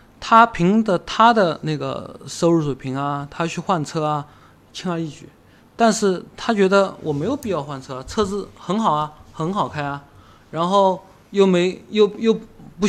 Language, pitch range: Chinese, 140-195 Hz